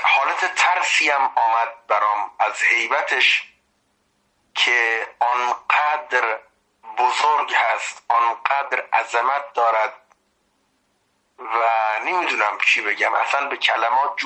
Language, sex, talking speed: Persian, male, 85 wpm